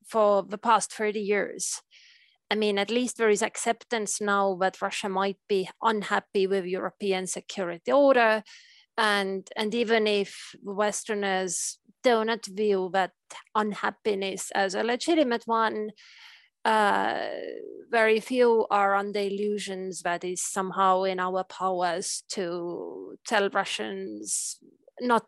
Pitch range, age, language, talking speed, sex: 195-245 Hz, 20-39, English, 125 wpm, female